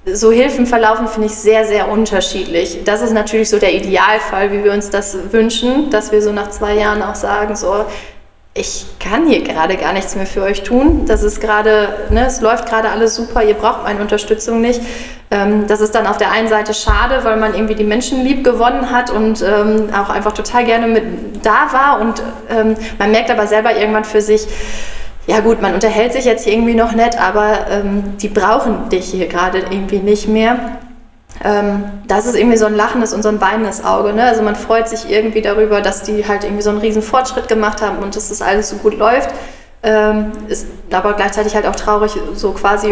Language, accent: German, German